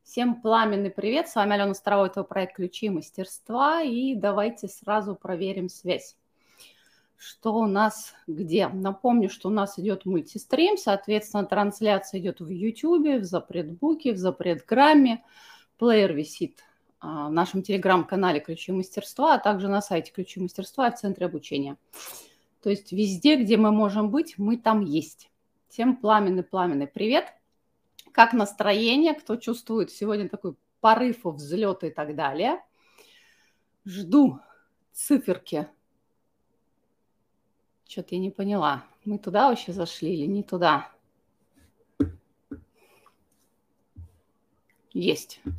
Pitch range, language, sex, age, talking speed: 185-230 Hz, Russian, female, 30-49, 125 wpm